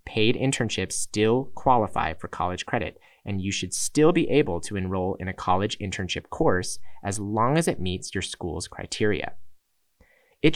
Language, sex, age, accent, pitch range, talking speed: English, male, 30-49, American, 90-130 Hz, 165 wpm